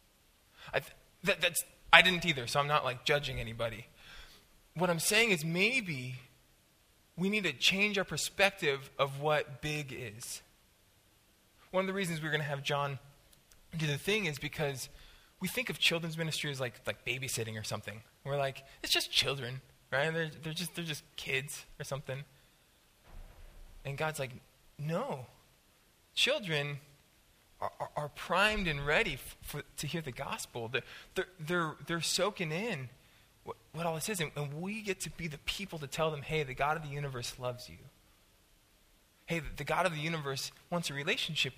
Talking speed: 180 wpm